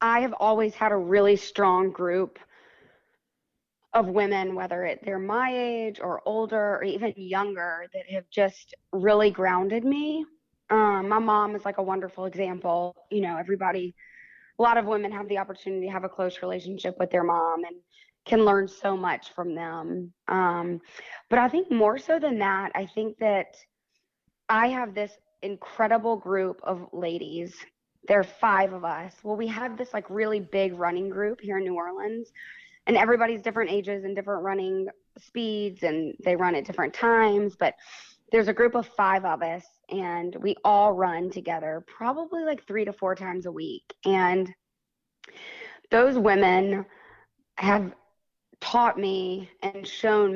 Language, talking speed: English, 165 wpm